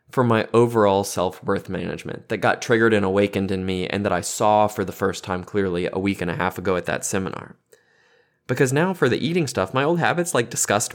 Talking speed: 225 wpm